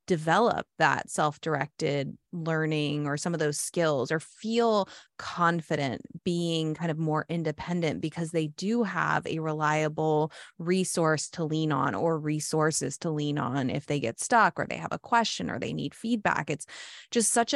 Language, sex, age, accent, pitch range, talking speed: English, female, 20-39, American, 155-195 Hz, 165 wpm